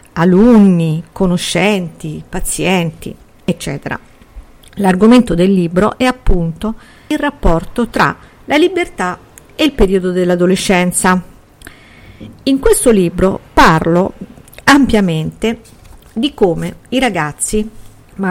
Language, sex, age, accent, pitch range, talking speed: Italian, female, 50-69, native, 170-225 Hz, 90 wpm